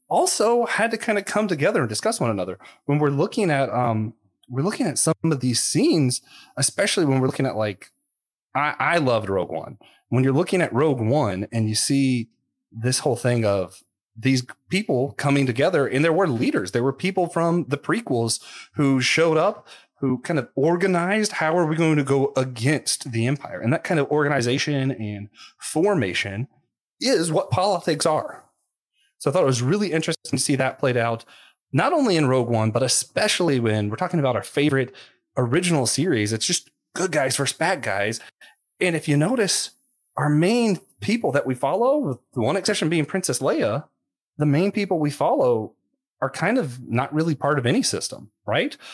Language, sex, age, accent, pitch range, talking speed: English, male, 30-49, American, 125-180 Hz, 190 wpm